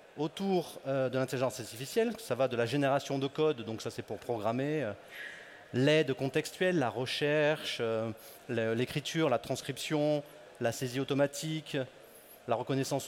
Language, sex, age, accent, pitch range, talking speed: French, male, 30-49, French, 130-170 Hz, 140 wpm